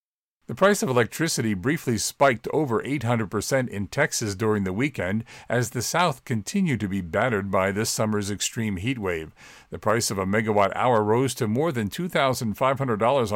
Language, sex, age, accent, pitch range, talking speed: English, male, 50-69, American, 105-130 Hz, 165 wpm